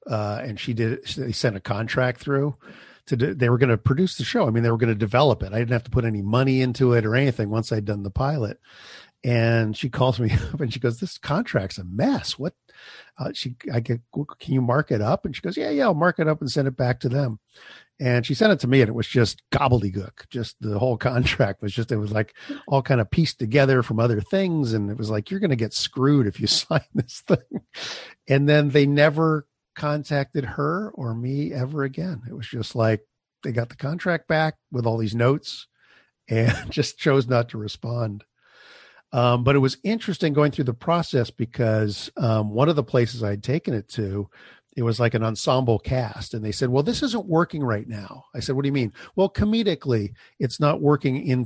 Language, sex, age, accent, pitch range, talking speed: English, male, 50-69, American, 115-145 Hz, 230 wpm